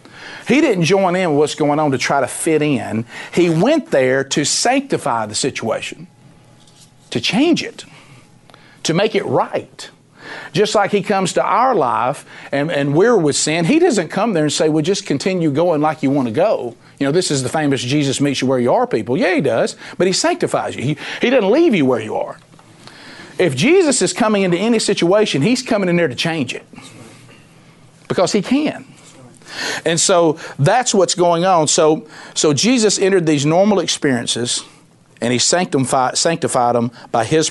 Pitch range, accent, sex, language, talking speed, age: 140-180 Hz, American, male, English, 190 wpm, 50-69